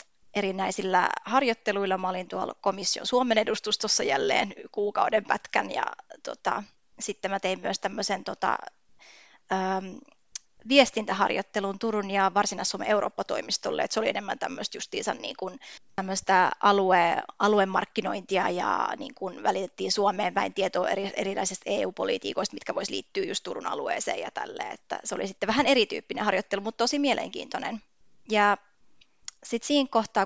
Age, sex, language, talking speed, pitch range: 20-39, female, Finnish, 130 wpm, 195-260 Hz